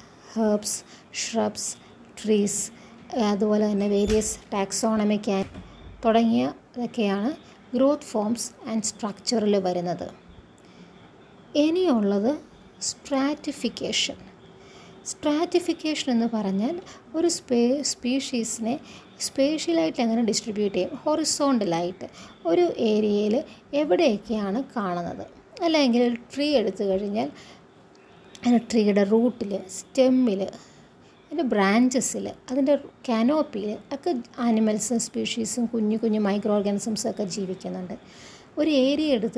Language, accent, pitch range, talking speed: Malayalam, native, 210-265 Hz, 85 wpm